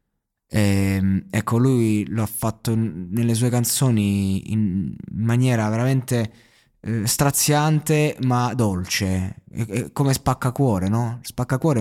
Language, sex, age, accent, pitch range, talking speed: Italian, male, 20-39, native, 110-140 Hz, 120 wpm